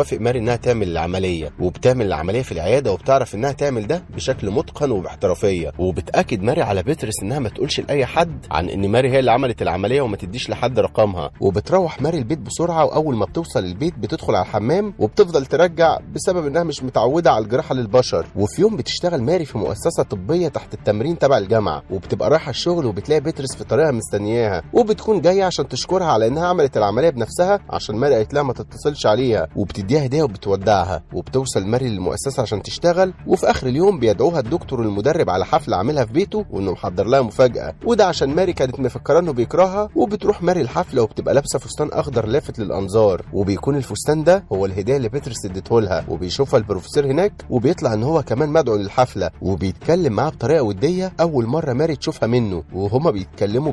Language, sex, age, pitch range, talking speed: Arabic, male, 30-49, 105-160 Hz, 175 wpm